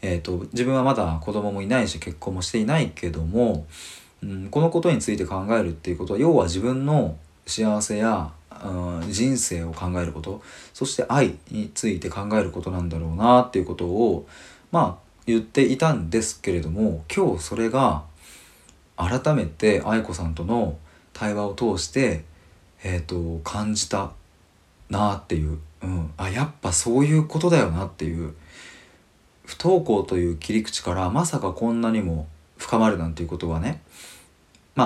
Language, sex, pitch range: Japanese, male, 85-115 Hz